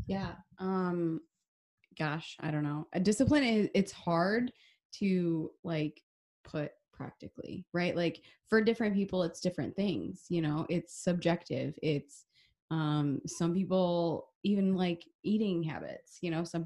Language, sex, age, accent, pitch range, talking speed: English, female, 20-39, American, 155-185 Hz, 135 wpm